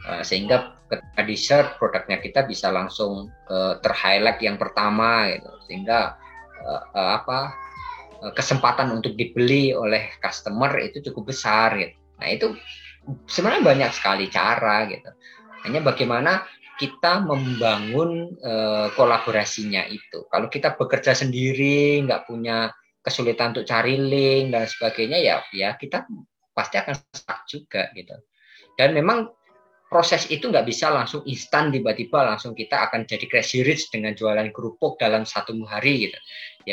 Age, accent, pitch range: 20-39, native, 110-140 Hz